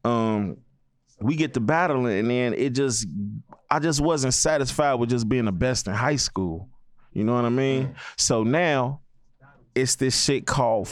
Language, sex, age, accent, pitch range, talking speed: English, male, 30-49, American, 115-140 Hz, 175 wpm